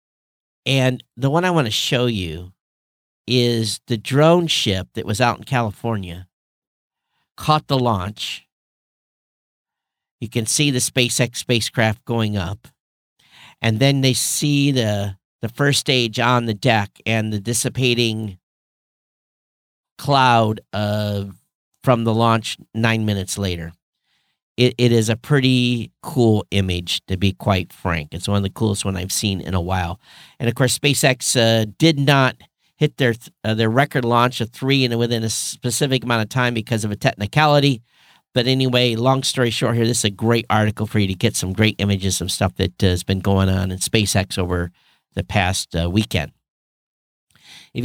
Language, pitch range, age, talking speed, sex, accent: English, 100-130 Hz, 50-69, 165 wpm, male, American